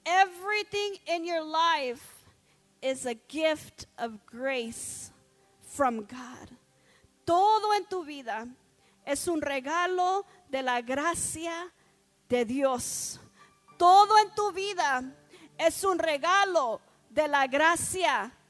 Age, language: 40-59, English